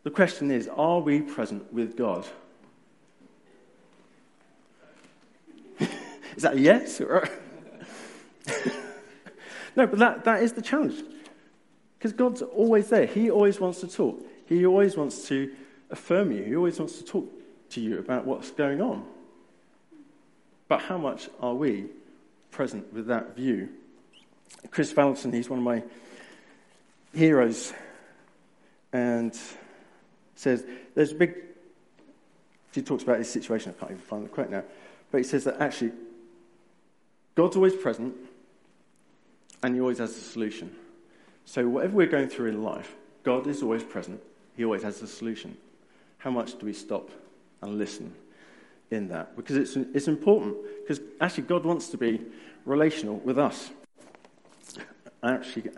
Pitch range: 120-175 Hz